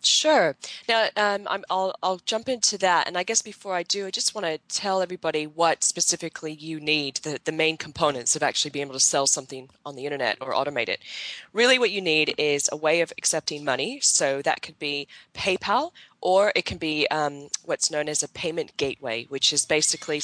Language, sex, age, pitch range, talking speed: English, female, 20-39, 145-185 Hz, 210 wpm